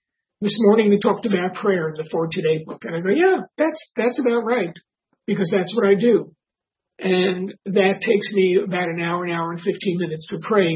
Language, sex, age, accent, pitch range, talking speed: English, male, 50-69, American, 170-205 Hz, 210 wpm